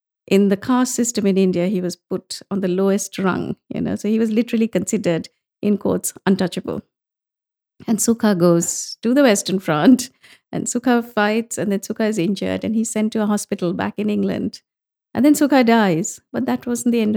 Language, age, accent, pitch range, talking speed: English, 50-69, Indian, 195-250 Hz, 195 wpm